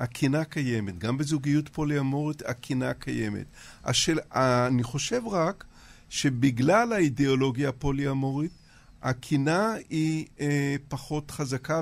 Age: 50-69